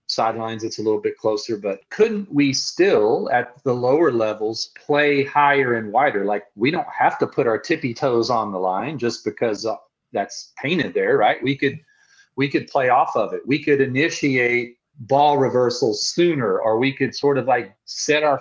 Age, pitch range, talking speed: 40-59, 120-145 Hz, 190 wpm